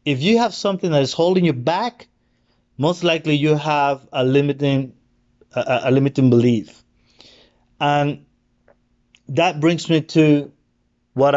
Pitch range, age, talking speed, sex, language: 120-155 Hz, 30-49, 130 wpm, male, English